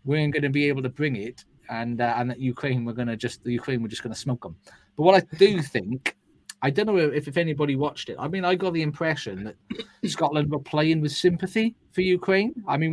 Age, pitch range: 30-49, 115-155 Hz